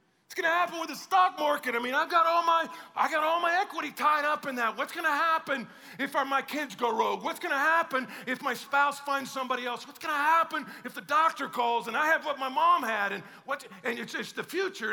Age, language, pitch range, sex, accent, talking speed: 40-59, English, 170-275 Hz, male, American, 250 wpm